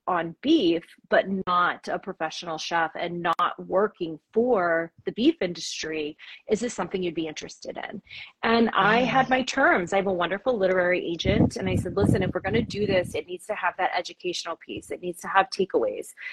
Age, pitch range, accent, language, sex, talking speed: 30-49, 180-230 Hz, American, English, female, 200 wpm